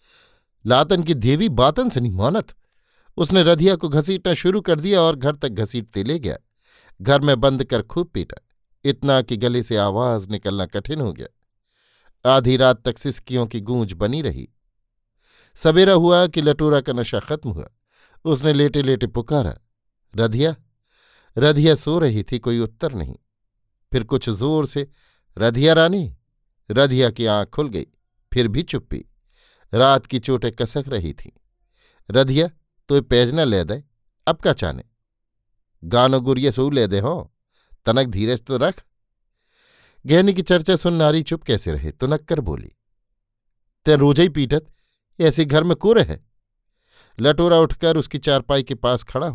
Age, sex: 50-69, male